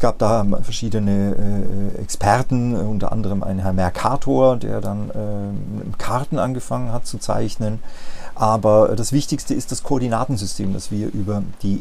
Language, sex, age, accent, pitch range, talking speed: German, male, 40-59, German, 105-130 Hz, 150 wpm